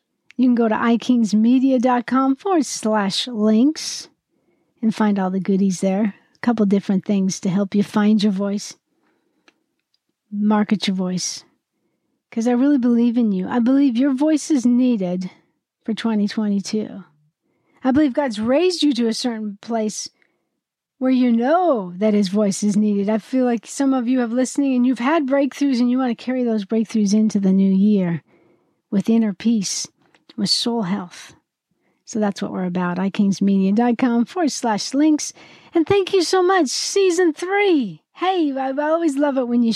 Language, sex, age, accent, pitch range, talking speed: English, female, 40-59, American, 205-270 Hz, 170 wpm